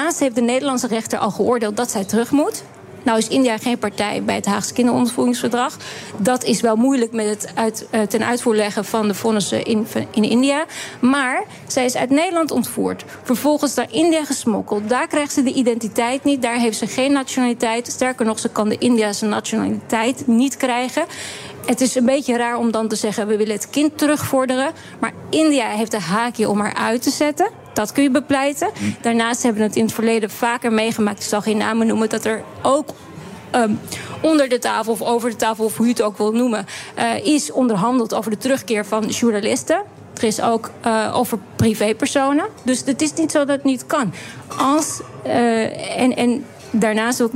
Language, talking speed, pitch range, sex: Dutch, 195 wpm, 220-265 Hz, female